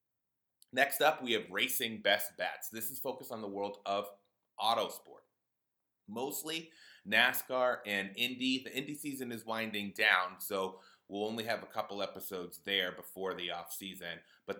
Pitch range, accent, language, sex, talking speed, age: 95-120 Hz, American, English, male, 150 wpm, 30-49